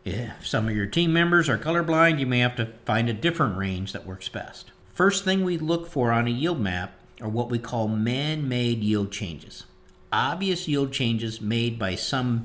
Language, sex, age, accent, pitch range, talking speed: English, male, 50-69, American, 110-135 Hz, 200 wpm